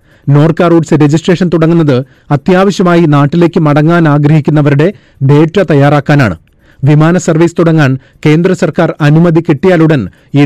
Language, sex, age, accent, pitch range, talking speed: Malayalam, male, 30-49, native, 145-170 Hz, 105 wpm